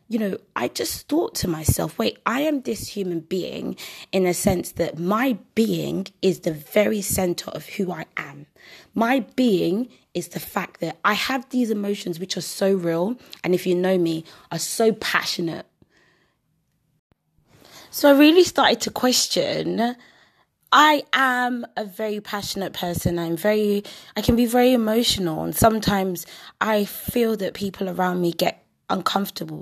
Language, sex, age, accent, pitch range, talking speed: English, female, 20-39, British, 170-230 Hz, 160 wpm